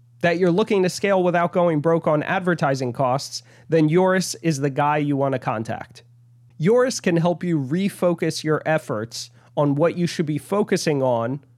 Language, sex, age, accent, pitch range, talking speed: English, male, 30-49, American, 135-170 Hz, 175 wpm